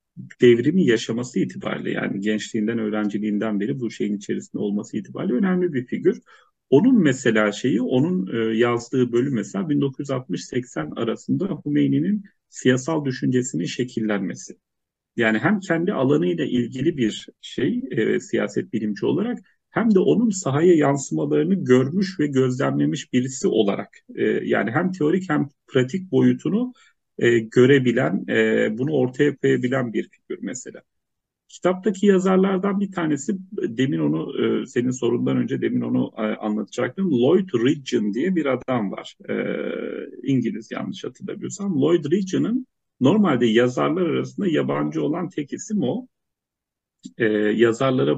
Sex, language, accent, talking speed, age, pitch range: male, English, Turkish, 125 wpm, 40-59, 115-180 Hz